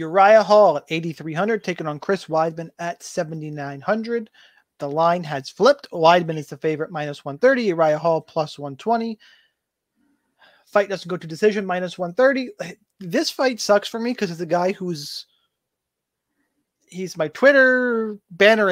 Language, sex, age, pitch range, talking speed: English, male, 30-49, 155-205 Hz, 145 wpm